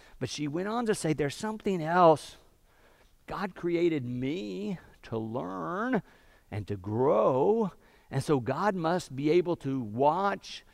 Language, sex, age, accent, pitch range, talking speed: English, male, 50-69, American, 120-175 Hz, 140 wpm